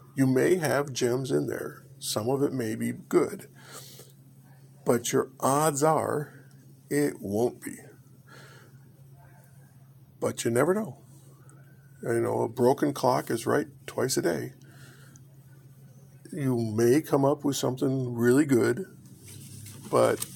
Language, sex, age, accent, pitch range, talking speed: English, male, 50-69, American, 125-140 Hz, 125 wpm